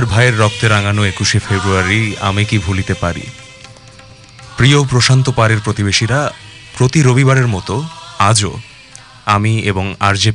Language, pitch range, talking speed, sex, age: English, 110-140 Hz, 105 wpm, male, 30-49